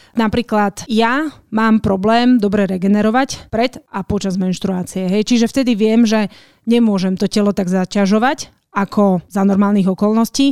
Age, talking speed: 30-49, 135 wpm